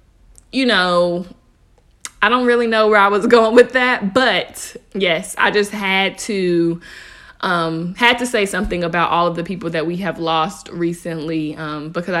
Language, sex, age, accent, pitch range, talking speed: English, female, 20-39, American, 170-210 Hz, 170 wpm